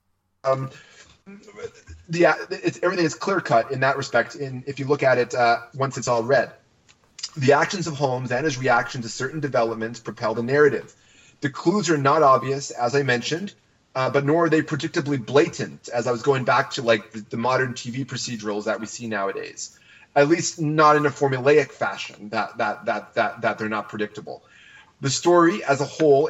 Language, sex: English, male